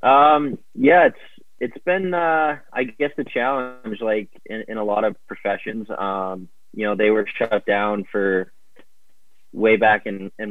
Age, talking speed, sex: 20-39, 165 wpm, male